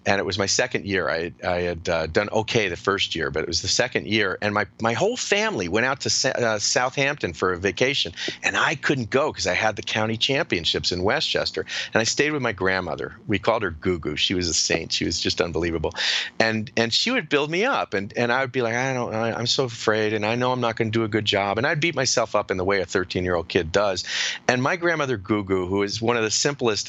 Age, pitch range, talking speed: 40-59, 100-150 Hz, 260 wpm